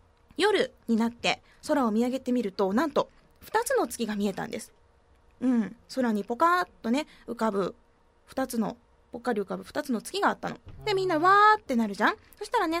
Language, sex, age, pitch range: Japanese, female, 20-39, 220-305 Hz